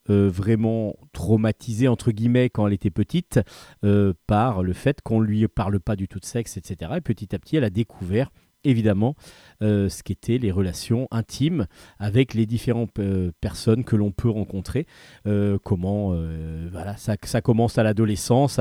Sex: male